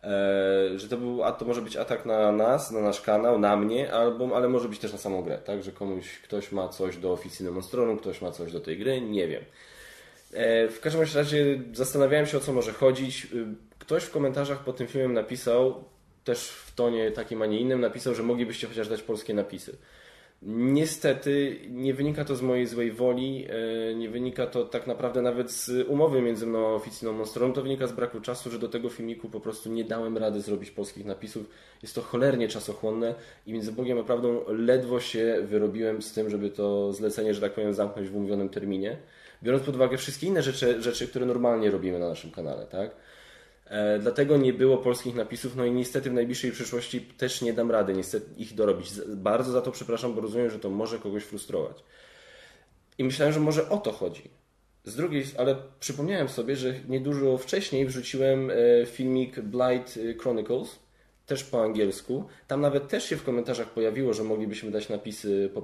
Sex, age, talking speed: male, 10-29, 190 wpm